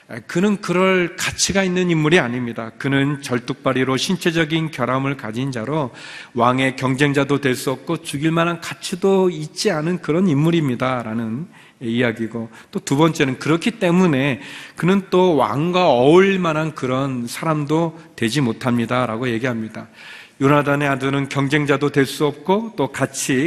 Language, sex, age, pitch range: Korean, male, 40-59, 120-155 Hz